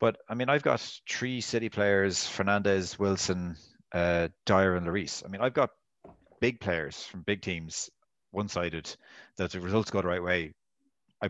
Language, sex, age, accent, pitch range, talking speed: English, male, 30-49, Irish, 90-100 Hz, 180 wpm